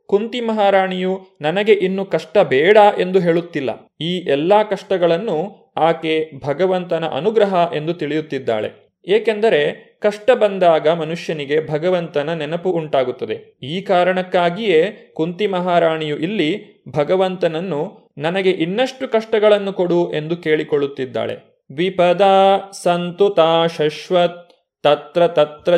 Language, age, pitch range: Kannada, 30-49, 155-200 Hz